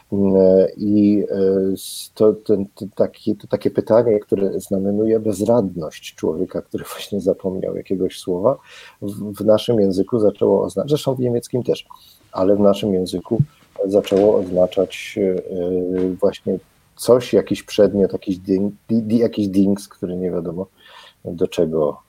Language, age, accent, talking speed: Polish, 40-59, native, 115 wpm